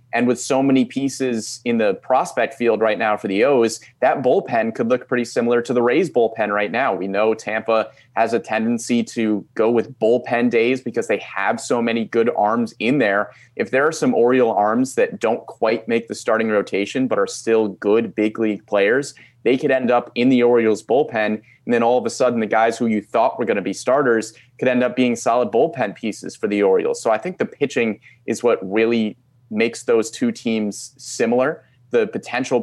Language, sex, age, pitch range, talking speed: English, male, 30-49, 110-125 Hz, 210 wpm